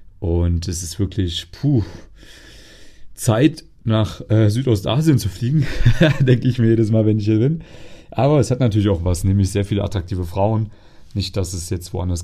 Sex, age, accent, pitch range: male, 30-49, German, 95-110 Hz